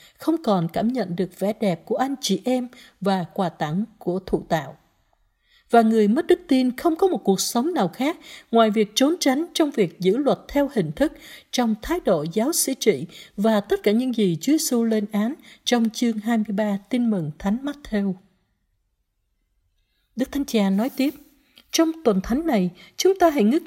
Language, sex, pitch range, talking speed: Vietnamese, female, 200-290 Hz, 190 wpm